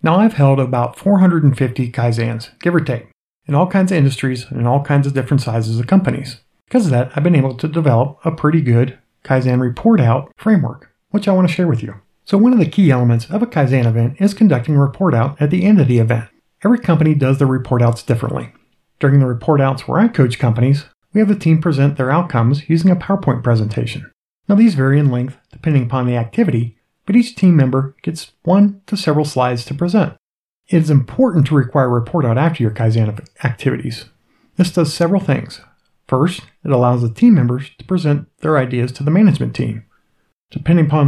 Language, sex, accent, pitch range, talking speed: English, male, American, 125-170 Hz, 210 wpm